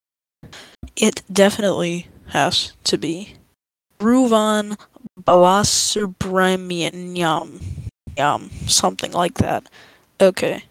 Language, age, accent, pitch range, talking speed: English, 10-29, American, 175-210 Hz, 65 wpm